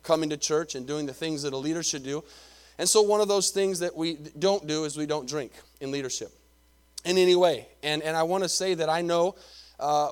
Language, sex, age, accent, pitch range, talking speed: English, male, 30-49, American, 150-180 Hz, 245 wpm